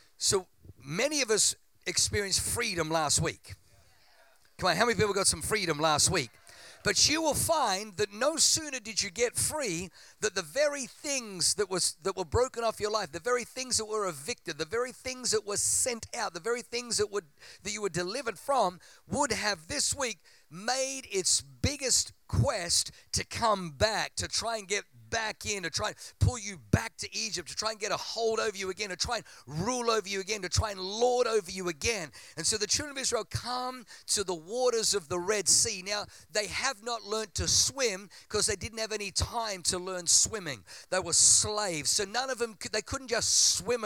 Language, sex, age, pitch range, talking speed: English, male, 50-69, 180-240 Hz, 210 wpm